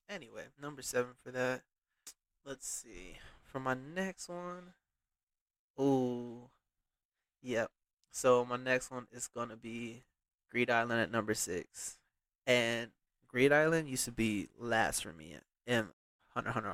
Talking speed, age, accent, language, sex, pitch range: 135 wpm, 20-39, American, English, male, 120-130 Hz